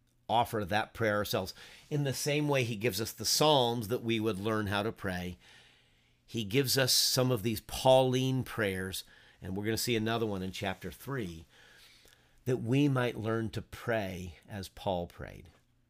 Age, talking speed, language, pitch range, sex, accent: 50-69, 175 wpm, English, 100-125 Hz, male, American